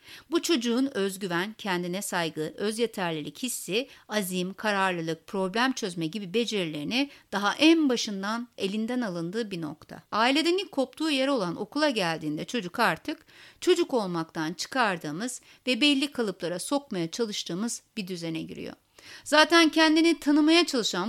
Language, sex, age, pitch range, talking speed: Turkish, female, 60-79, 185-255 Hz, 125 wpm